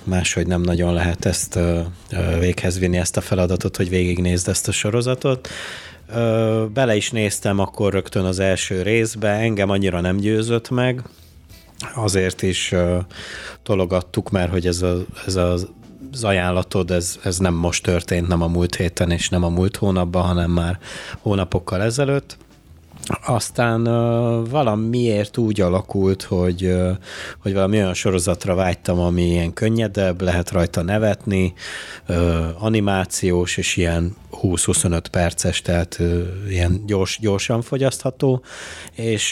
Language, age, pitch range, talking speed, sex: Hungarian, 30-49, 90-110 Hz, 125 wpm, male